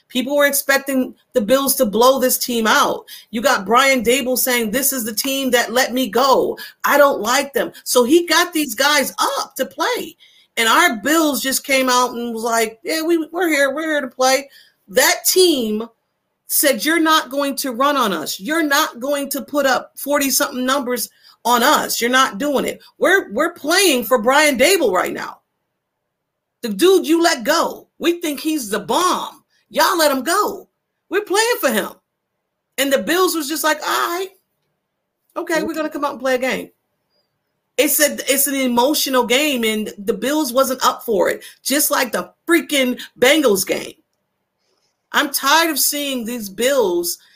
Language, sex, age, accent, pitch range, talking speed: English, female, 40-59, American, 250-315 Hz, 180 wpm